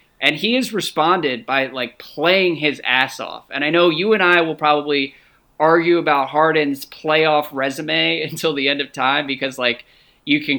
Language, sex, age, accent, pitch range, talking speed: English, male, 20-39, American, 135-165 Hz, 180 wpm